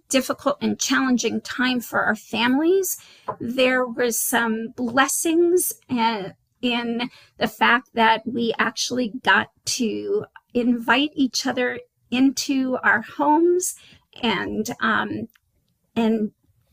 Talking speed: 95 wpm